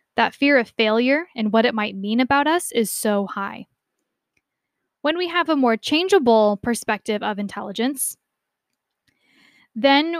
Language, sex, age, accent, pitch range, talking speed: English, female, 10-29, American, 230-295 Hz, 140 wpm